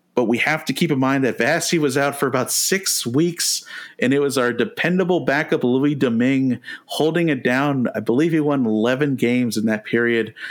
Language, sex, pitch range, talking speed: English, male, 110-140 Hz, 200 wpm